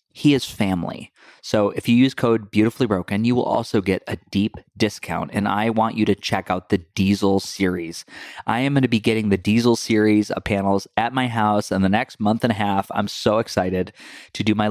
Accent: American